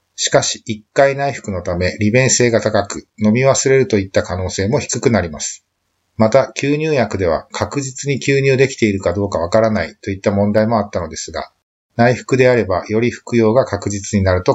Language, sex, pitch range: Japanese, male, 95-125 Hz